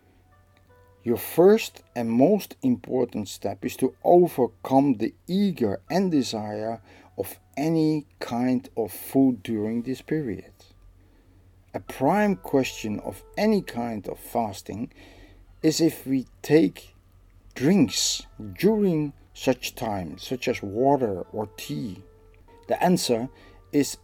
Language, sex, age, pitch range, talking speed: English, male, 50-69, 95-135 Hz, 110 wpm